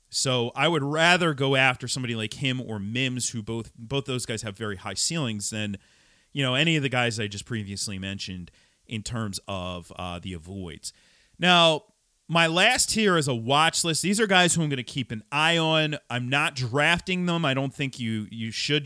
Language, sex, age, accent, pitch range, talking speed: English, male, 40-59, American, 110-155 Hz, 210 wpm